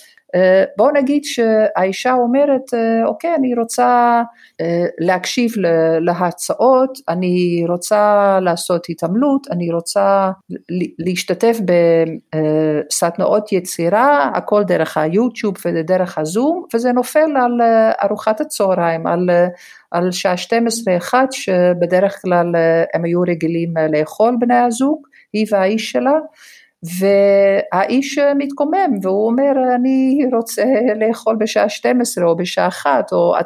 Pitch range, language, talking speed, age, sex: 180-255 Hz, Hebrew, 100 wpm, 50-69, female